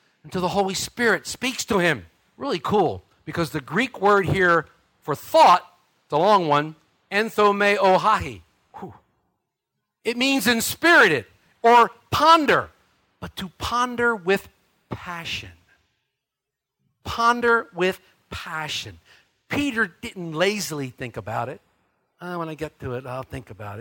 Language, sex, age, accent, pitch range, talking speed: English, male, 50-69, American, 160-250 Hz, 125 wpm